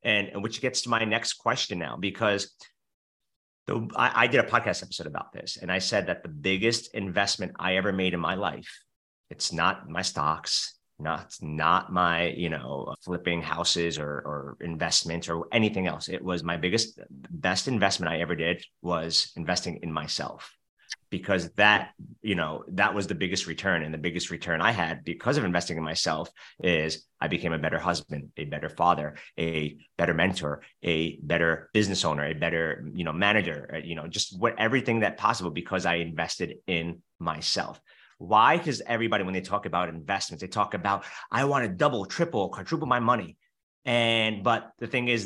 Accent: American